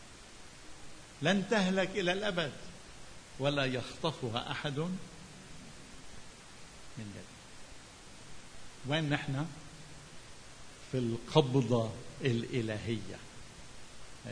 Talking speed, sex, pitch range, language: 60 wpm, male, 115-135 Hz, Arabic